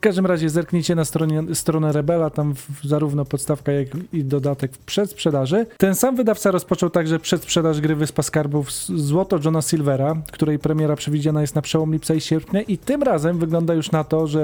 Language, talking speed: Polish, 190 wpm